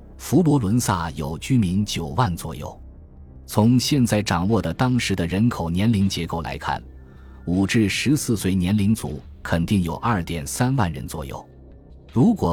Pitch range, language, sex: 80-110 Hz, Chinese, male